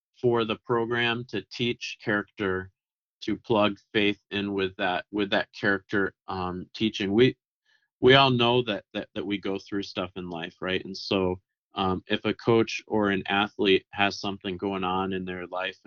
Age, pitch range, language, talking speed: 30-49, 95-105 Hz, English, 180 wpm